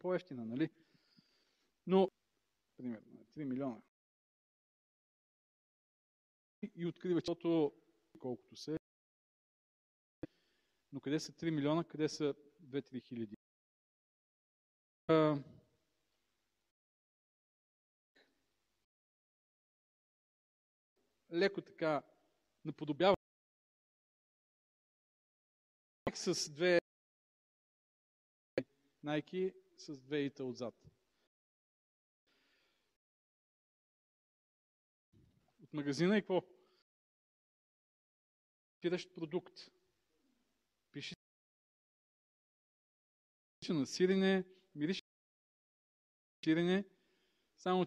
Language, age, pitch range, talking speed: Bulgarian, 40-59, 140-180 Hz, 60 wpm